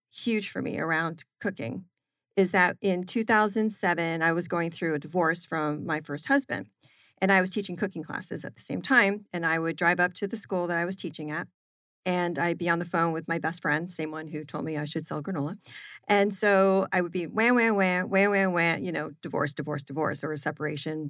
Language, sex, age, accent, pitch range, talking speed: English, female, 40-59, American, 170-205 Hz, 230 wpm